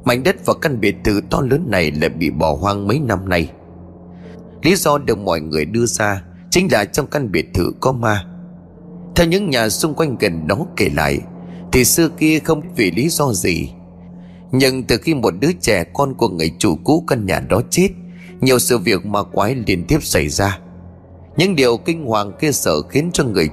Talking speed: 205 wpm